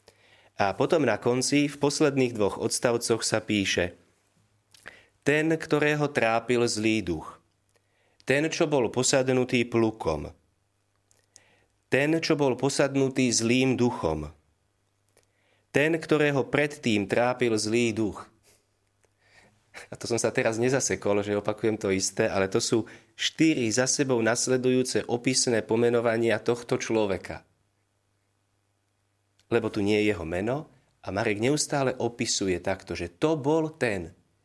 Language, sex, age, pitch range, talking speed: Slovak, male, 30-49, 100-125 Hz, 120 wpm